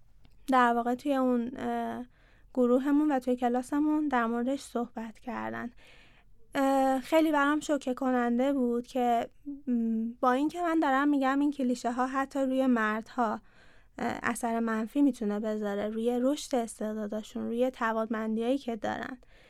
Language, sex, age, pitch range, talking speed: Persian, female, 20-39, 230-290 Hz, 140 wpm